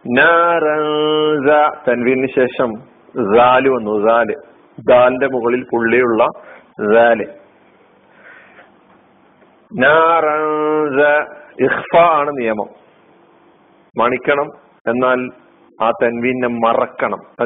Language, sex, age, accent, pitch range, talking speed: Malayalam, male, 50-69, native, 125-155 Hz, 50 wpm